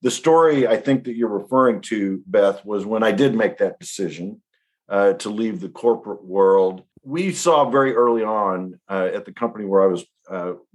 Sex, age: male, 50-69